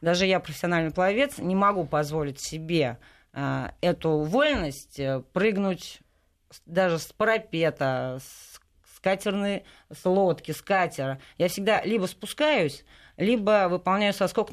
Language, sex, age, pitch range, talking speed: Russian, female, 30-49, 130-190 Hz, 115 wpm